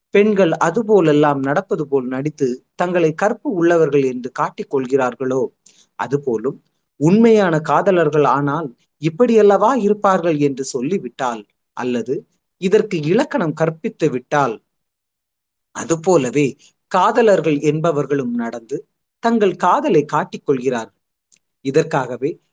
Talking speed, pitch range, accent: 80 wpm, 135-195 Hz, native